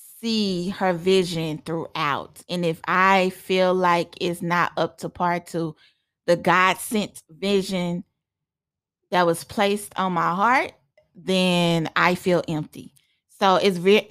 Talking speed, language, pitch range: 130 wpm, English, 165-195 Hz